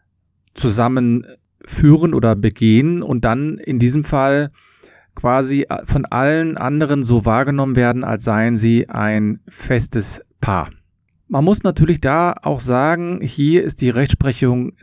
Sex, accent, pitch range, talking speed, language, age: male, German, 110-140 Hz, 125 wpm, German, 40-59